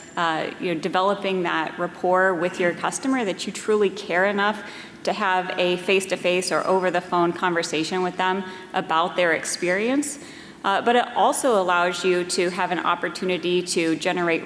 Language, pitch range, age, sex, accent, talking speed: English, 165-195 Hz, 30-49, female, American, 160 wpm